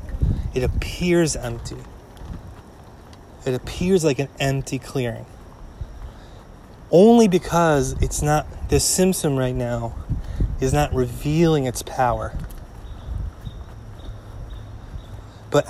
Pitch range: 110-145 Hz